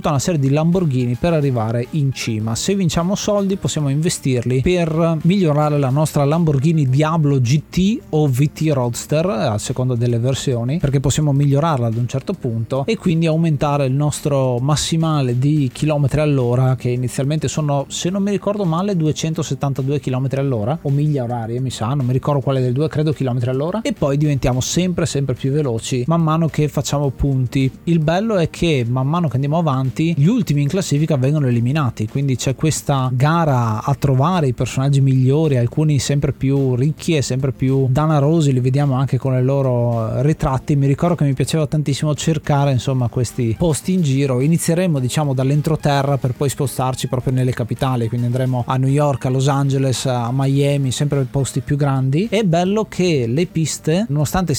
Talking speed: 175 wpm